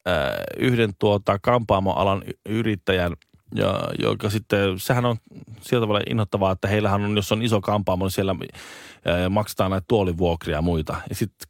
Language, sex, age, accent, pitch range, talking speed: Finnish, male, 20-39, native, 95-120 Hz, 155 wpm